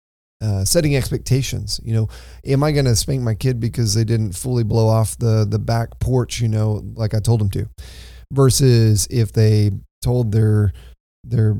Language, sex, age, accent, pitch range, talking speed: English, male, 30-49, American, 105-125 Hz, 180 wpm